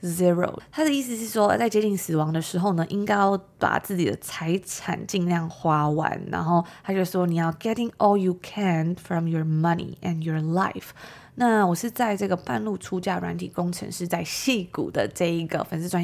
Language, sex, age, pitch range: Chinese, female, 20-39, 175-215 Hz